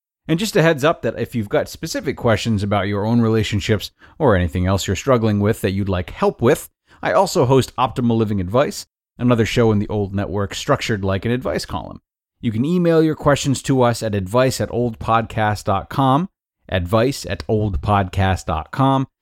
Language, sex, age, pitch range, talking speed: English, male, 30-49, 100-130 Hz, 180 wpm